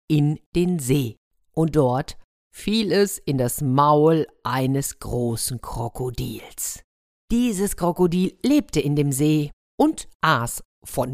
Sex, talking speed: female, 120 wpm